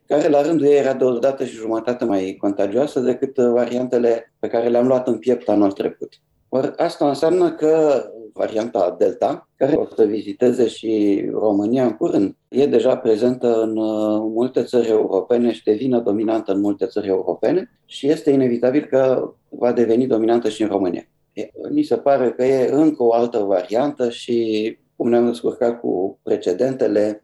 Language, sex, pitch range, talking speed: Romanian, male, 110-130 Hz, 165 wpm